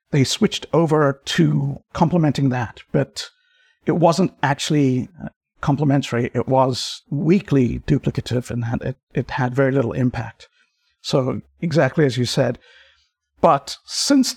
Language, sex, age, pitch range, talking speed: English, male, 50-69, 125-155 Hz, 120 wpm